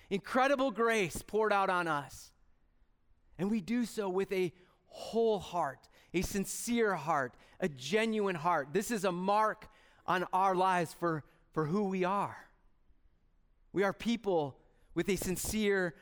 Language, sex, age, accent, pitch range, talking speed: English, male, 30-49, American, 180-260 Hz, 140 wpm